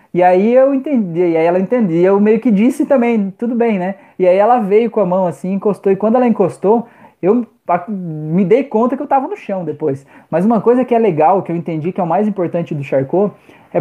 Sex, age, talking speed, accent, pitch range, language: male, 20-39, 245 wpm, Brazilian, 175-230 Hz, Portuguese